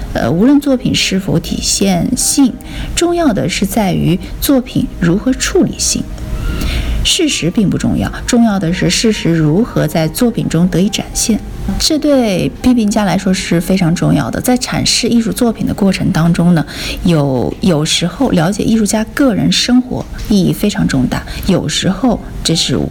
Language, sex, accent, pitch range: Chinese, female, native, 170-240 Hz